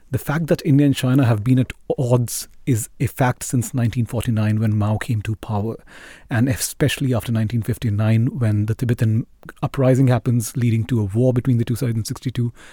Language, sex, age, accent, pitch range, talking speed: English, male, 40-59, Indian, 120-145 Hz, 185 wpm